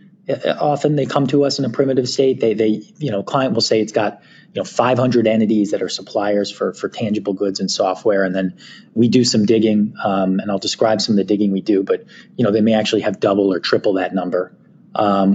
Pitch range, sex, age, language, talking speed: 100-115 Hz, male, 30-49, English, 235 wpm